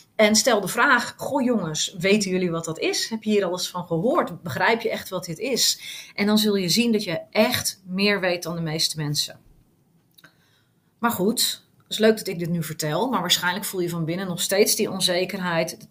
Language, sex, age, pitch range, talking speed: Dutch, female, 30-49, 175-235 Hz, 220 wpm